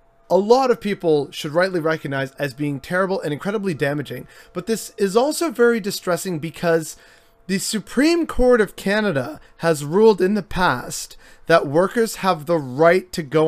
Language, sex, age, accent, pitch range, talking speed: English, male, 30-49, American, 150-195 Hz, 165 wpm